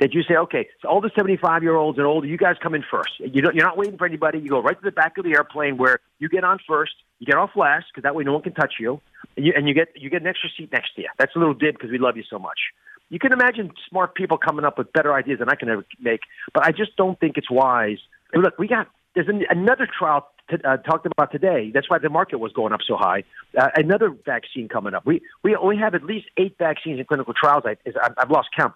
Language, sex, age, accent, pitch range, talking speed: English, male, 40-59, American, 135-175 Hz, 280 wpm